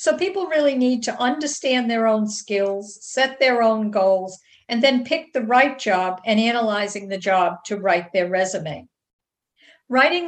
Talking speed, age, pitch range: 165 wpm, 50-69, 200-250 Hz